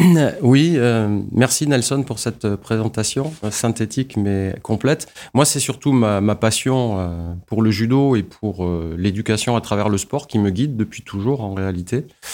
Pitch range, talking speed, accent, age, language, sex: 100-120 Hz, 175 wpm, French, 30-49, French, male